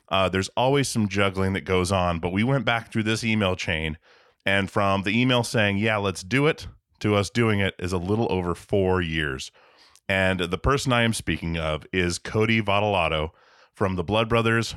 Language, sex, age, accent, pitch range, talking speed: English, male, 30-49, American, 95-120 Hz, 200 wpm